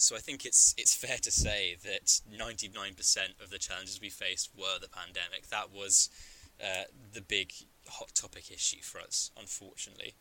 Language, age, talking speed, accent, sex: English, 10-29, 170 wpm, British, male